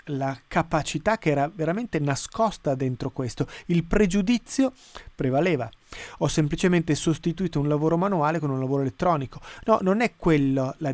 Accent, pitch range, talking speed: native, 155-185 Hz, 145 wpm